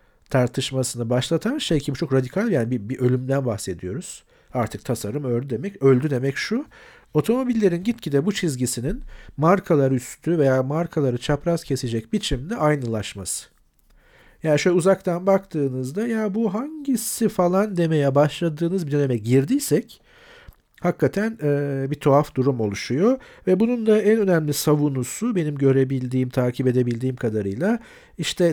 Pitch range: 125-185 Hz